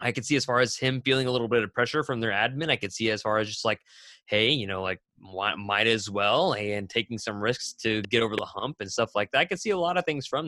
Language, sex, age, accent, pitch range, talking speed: English, male, 20-39, American, 110-150 Hz, 300 wpm